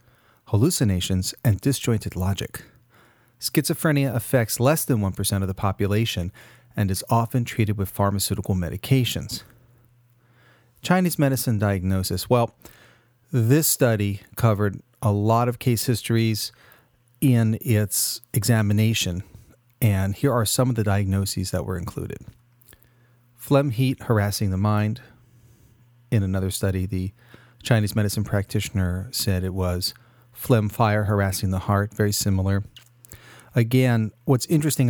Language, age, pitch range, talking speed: English, 40-59, 100-120 Hz, 120 wpm